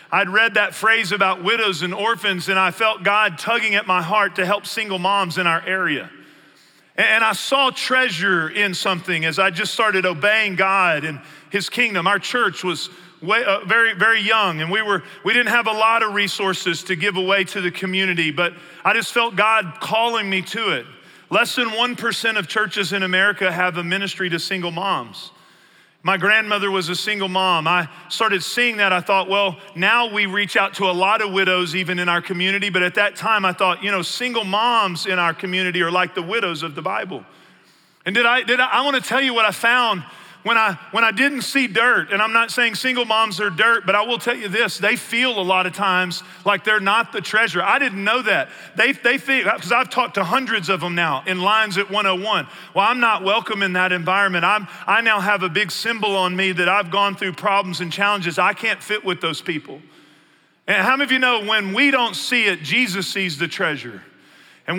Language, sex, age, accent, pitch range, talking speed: English, male, 40-59, American, 185-225 Hz, 220 wpm